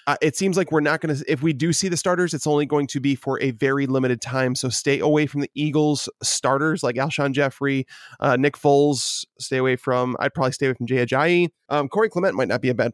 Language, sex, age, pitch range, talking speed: English, male, 20-39, 135-170 Hz, 255 wpm